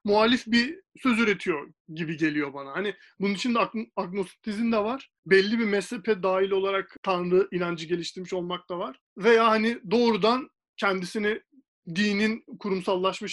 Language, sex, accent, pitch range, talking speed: Turkish, male, native, 185-235 Hz, 140 wpm